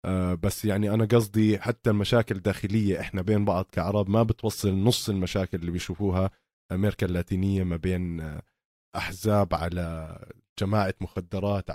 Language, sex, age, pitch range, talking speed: Arabic, male, 20-39, 95-115 Hz, 130 wpm